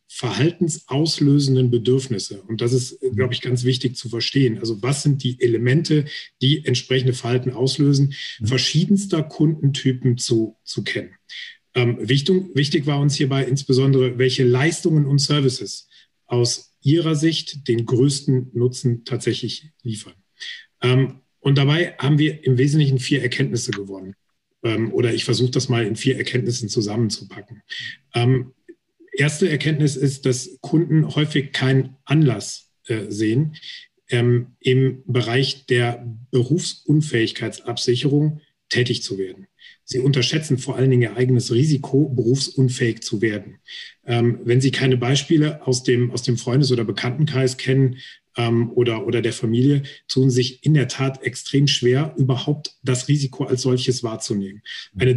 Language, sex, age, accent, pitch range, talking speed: German, male, 40-59, German, 120-145 Hz, 135 wpm